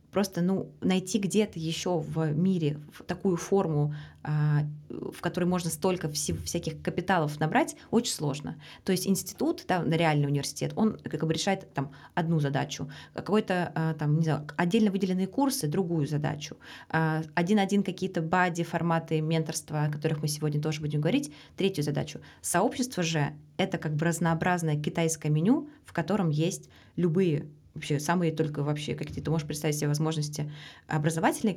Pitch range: 150-185 Hz